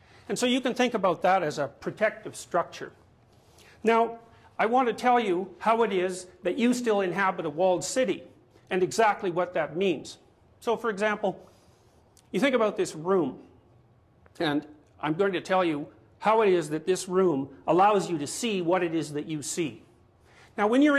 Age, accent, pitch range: 50-69, American, 170-220 Hz